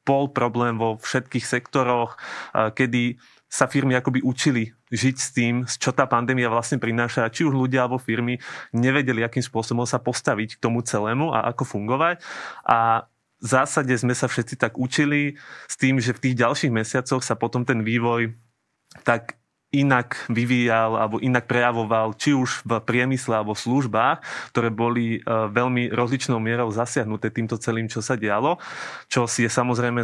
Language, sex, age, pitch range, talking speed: Slovak, male, 20-39, 115-130 Hz, 160 wpm